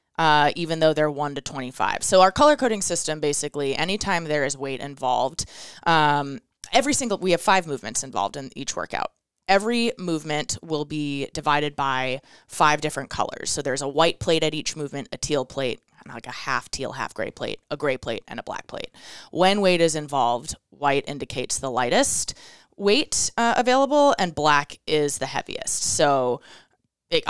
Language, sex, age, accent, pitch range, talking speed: English, female, 20-39, American, 140-170 Hz, 180 wpm